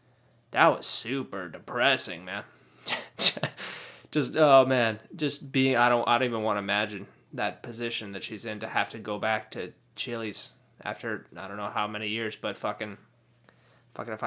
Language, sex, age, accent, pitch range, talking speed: English, male, 20-39, American, 110-140 Hz, 175 wpm